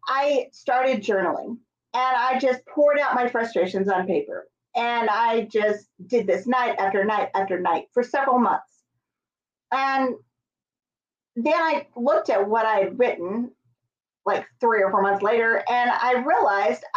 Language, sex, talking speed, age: English, female, 150 wpm, 40-59